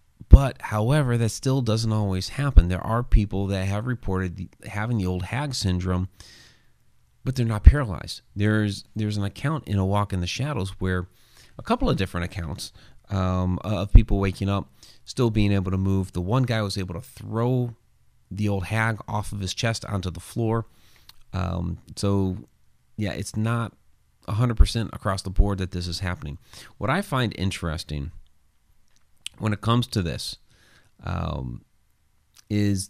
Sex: male